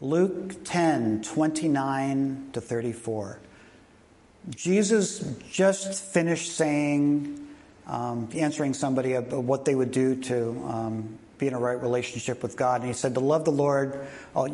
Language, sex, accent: English, male, American